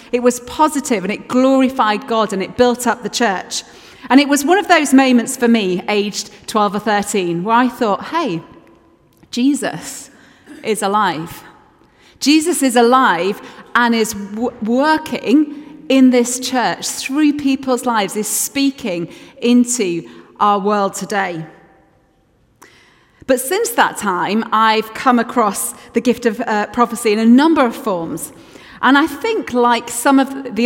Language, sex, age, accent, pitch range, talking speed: English, female, 30-49, British, 215-270 Hz, 145 wpm